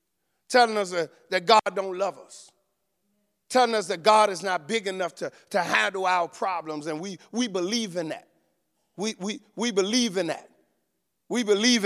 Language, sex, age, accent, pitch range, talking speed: English, male, 50-69, American, 200-255 Hz, 170 wpm